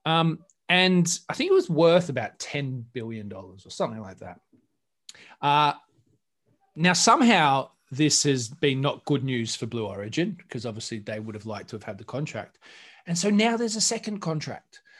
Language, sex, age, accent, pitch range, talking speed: English, male, 20-39, Australian, 120-170 Hz, 175 wpm